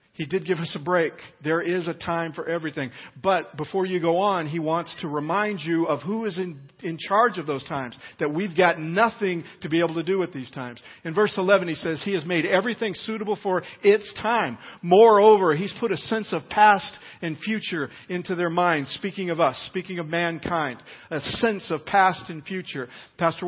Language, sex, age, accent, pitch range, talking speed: English, male, 50-69, American, 155-195 Hz, 205 wpm